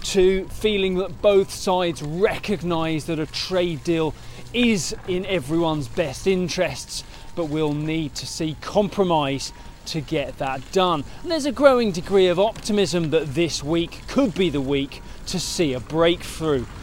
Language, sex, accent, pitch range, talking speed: English, male, British, 150-190 Hz, 155 wpm